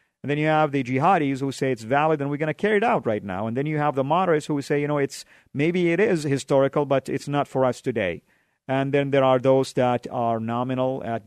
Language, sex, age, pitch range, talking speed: English, male, 50-69, 115-135 Hz, 260 wpm